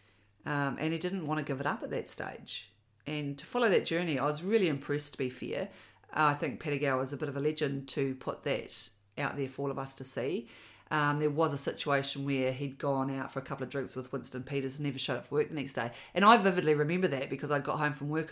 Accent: Australian